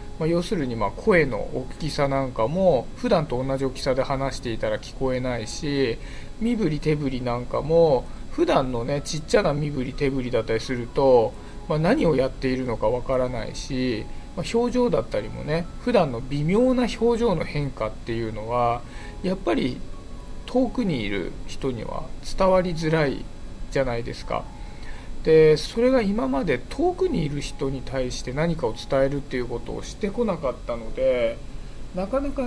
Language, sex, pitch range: Japanese, male, 130-190 Hz